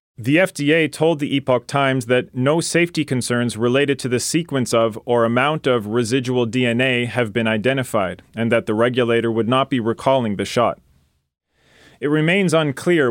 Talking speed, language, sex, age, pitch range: 165 wpm, English, male, 40-59, 115-145 Hz